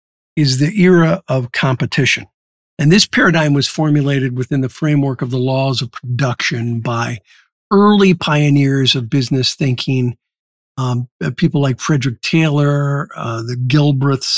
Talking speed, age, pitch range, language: 135 wpm, 50-69, 130-170 Hz, English